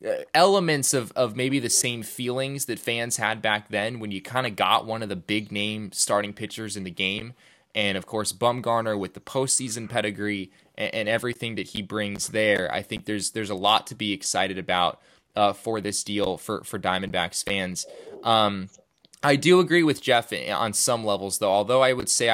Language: English